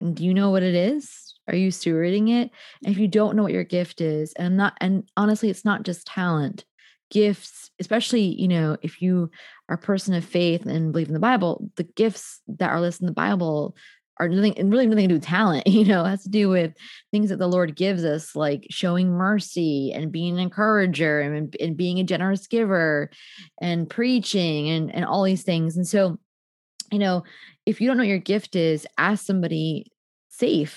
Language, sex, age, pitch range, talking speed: English, female, 20-39, 160-205 Hz, 210 wpm